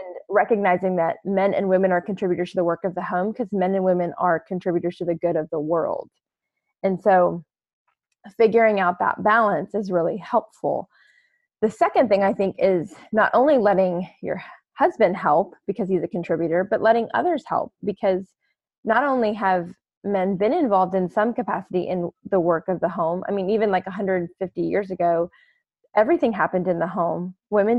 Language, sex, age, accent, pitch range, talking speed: English, female, 20-39, American, 180-220 Hz, 180 wpm